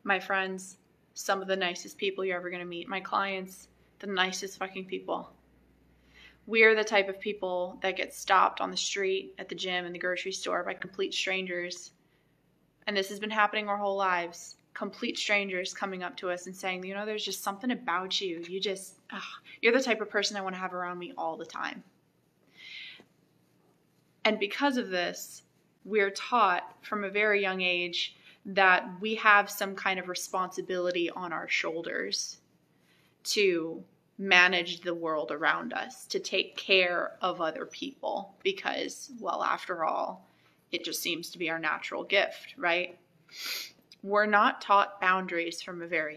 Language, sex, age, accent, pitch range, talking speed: English, female, 20-39, American, 175-210 Hz, 170 wpm